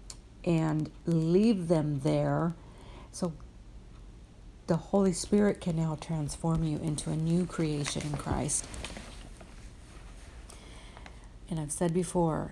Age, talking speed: 50-69, 105 wpm